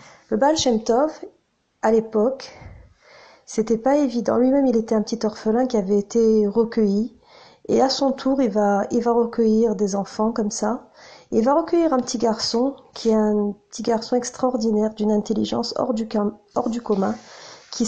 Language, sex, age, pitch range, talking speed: French, female, 40-59, 210-250 Hz, 180 wpm